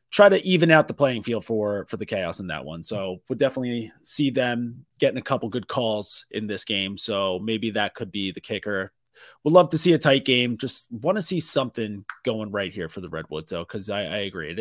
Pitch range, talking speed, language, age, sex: 105-140 Hz, 240 wpm, English, 30-49, male